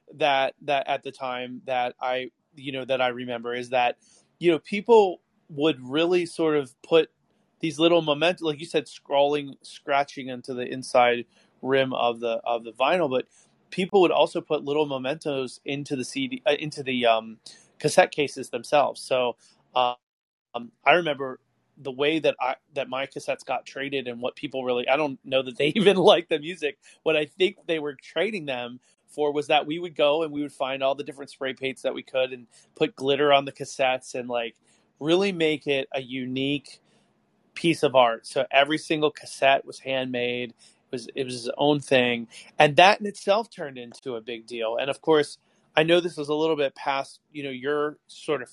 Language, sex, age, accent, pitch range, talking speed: English, male, 30-49, American, 125-155 Hz, 200 wpm